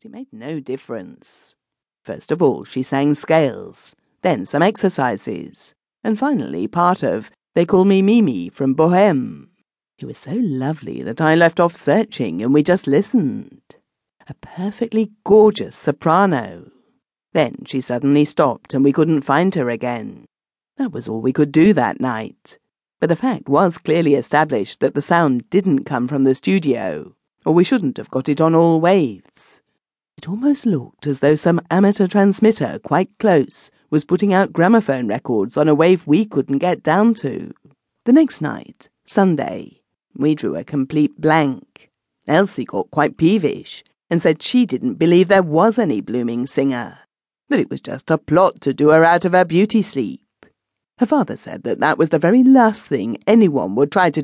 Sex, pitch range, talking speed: female, 140-200 Hz, 170 wpm